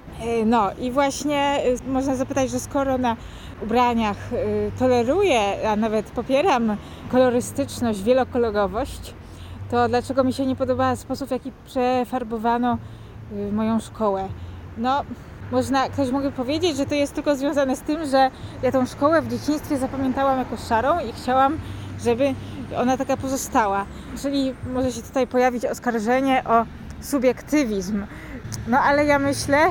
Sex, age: female, 20-39